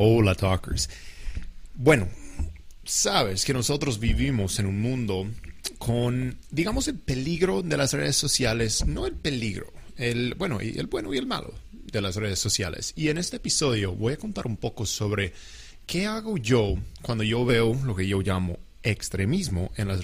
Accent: Mexican